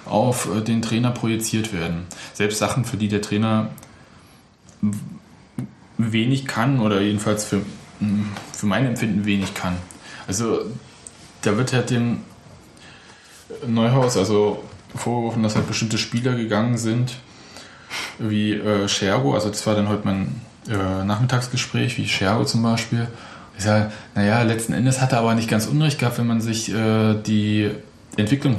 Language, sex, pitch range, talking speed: German, male, 100-115 Hz, 150 wpm